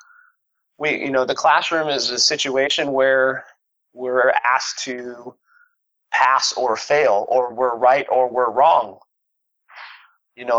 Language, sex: English, male